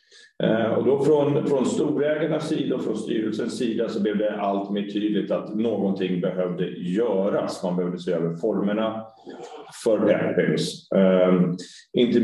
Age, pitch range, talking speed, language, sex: 30-49, 100-110 Hz, 145 wpm, Swedish, male